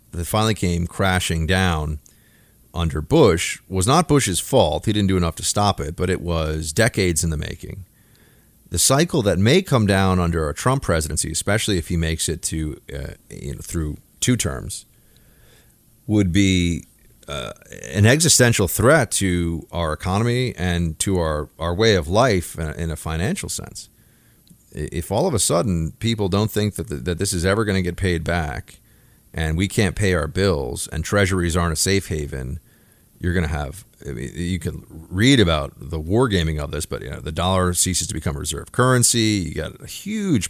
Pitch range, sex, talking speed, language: 80-105 Hz, male, 185 wpm, English